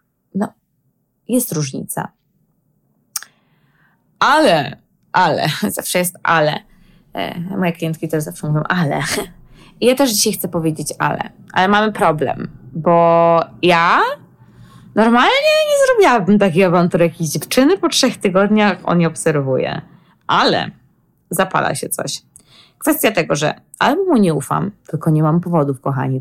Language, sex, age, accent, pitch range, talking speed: Polish, female, 20-39, native, 160-215 Hz, 120 wpm